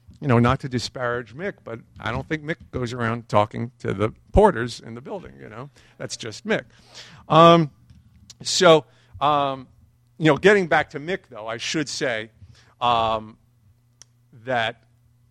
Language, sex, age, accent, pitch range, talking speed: English, male, 50-69, American, 115-150 Hz, 155 wpm